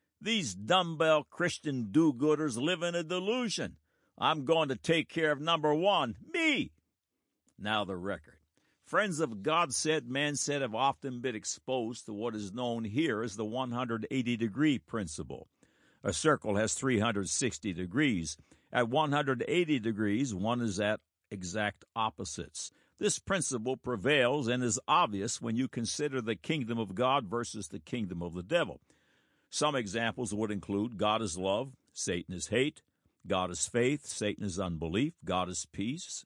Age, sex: 60-79, male